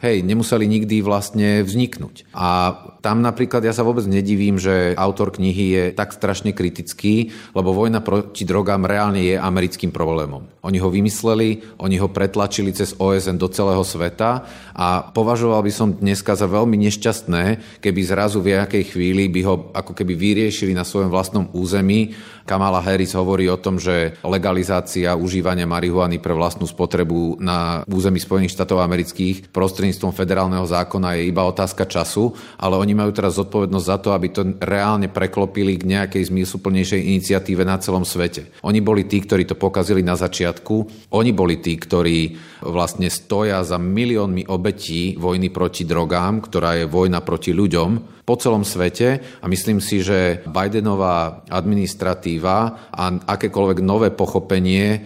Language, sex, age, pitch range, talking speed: Slovak, male, 30-49, 90-105 Hz, 150 wpm